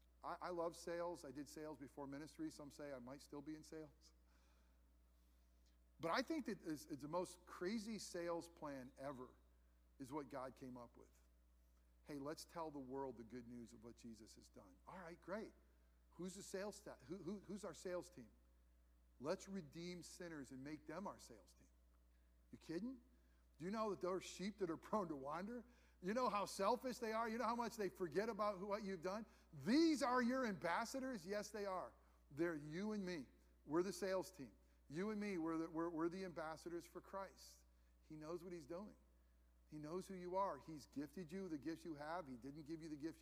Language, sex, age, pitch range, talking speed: English, male, 50-69, 130-185 Hz, 210 wpm